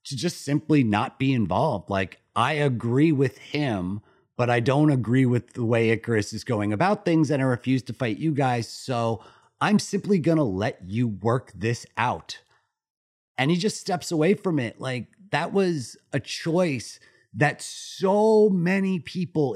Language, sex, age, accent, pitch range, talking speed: English, male, 30-49, American, 110-150 Hz, 170 wpm